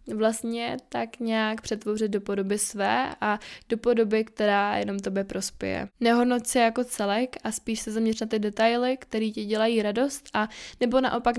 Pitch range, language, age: 205-235 Hz, Czech, 20-39